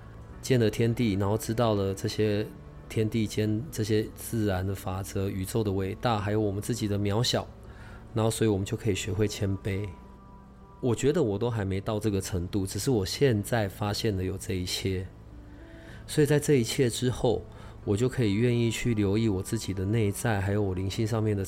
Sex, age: male, 20-39